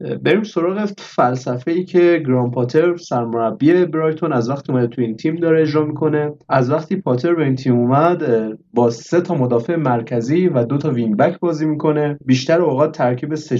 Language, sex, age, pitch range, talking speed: Persian, male, 30-49, 125-170 Hz, 180 wpm